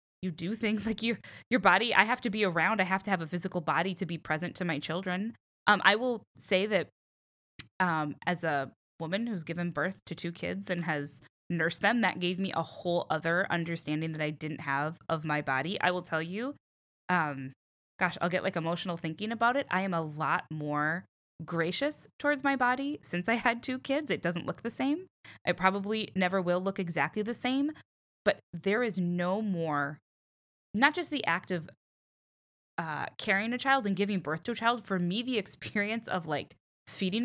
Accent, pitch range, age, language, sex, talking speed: American, 160-215 Hz, 10-29, English, female, 200 wpm